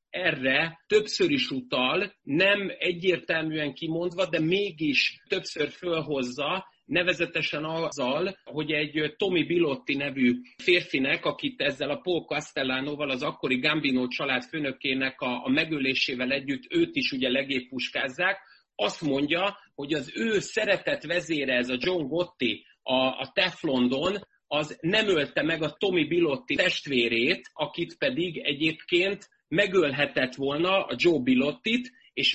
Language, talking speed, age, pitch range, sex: Hungarian, 120 wpm, 30-49, 135-195 Hz, male